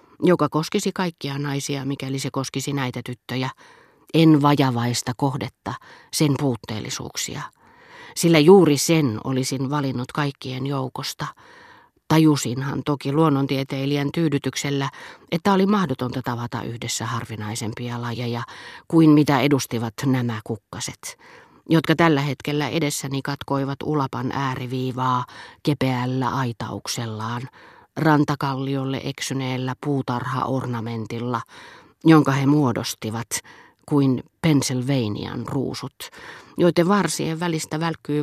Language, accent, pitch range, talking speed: Finnish, native, 125-150 Hz, 95 wpm